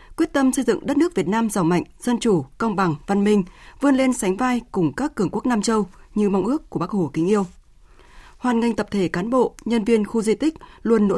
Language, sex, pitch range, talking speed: Vietnamese, female, 185-245 Hz, 250 wpm